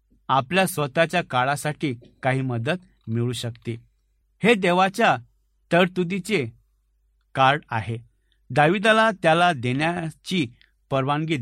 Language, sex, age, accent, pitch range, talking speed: Marathi, male, 60-79, native, 125-175 Hz, 85 wpm